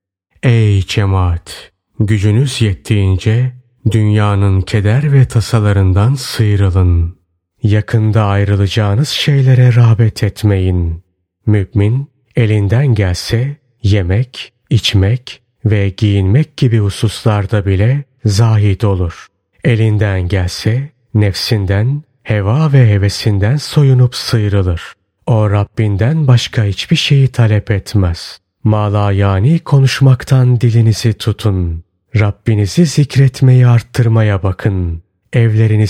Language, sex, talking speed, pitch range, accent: Turkish, male, 85 wpm, 100-125 Hz, native